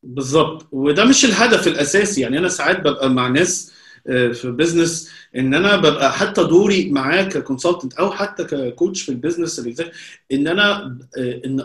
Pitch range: 135-180 Hz